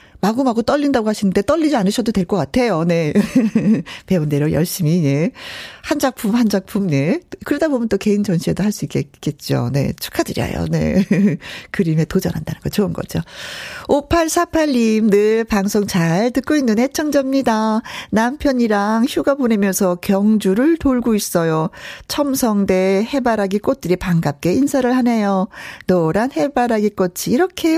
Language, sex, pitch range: Korean, female, 170-250 Hz